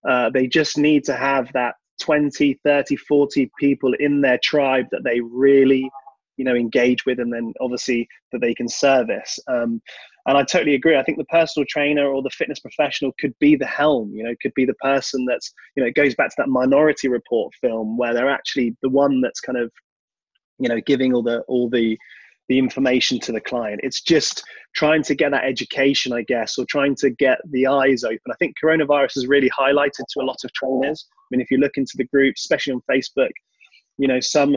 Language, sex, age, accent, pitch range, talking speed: English, male, 20-39, British, 125-150 Hz, 215 wpm